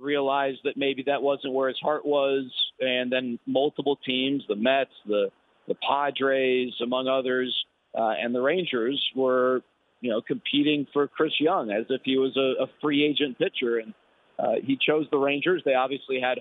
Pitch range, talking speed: 130-145 Hz, 180 wpm